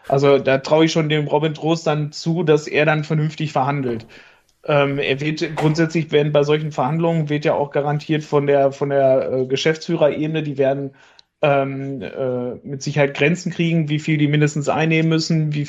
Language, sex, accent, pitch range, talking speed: German, male, German, 135-155 Hz, 185 wpm